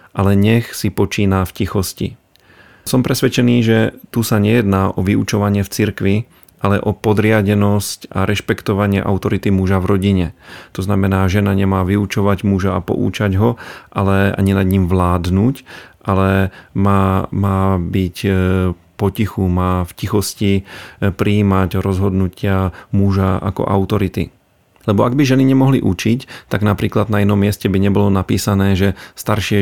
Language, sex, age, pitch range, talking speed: Slovak, male, 40-59, 95-105 Hz, 140 wpm